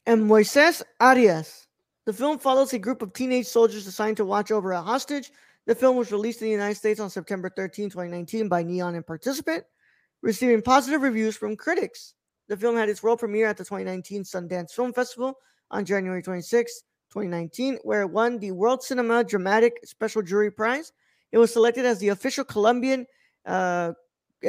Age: 20-39